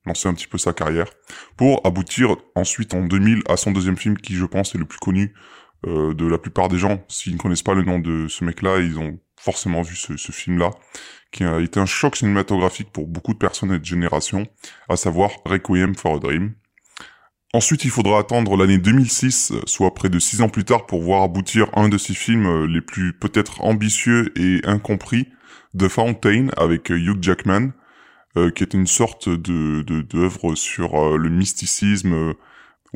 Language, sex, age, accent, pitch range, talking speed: French, female, 20-39, French, 85-105 Hz, 195 wpm